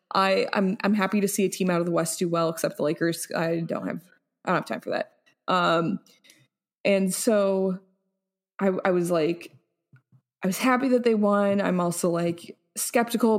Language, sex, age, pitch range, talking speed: English, female, 20-39, 175-205 Hz, 195 wpm